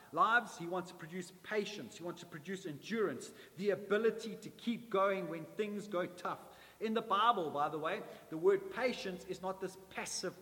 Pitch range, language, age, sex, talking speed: 180-225 Hz, English, 30-49, male, 190 wpm